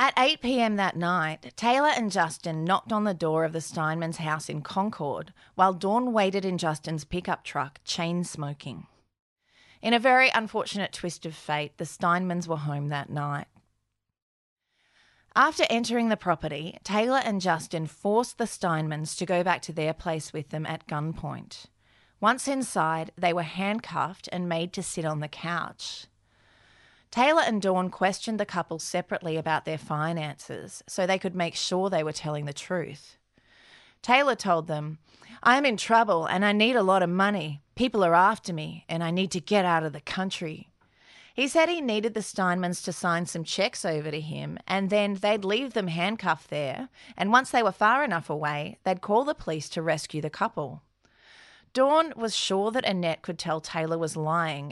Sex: female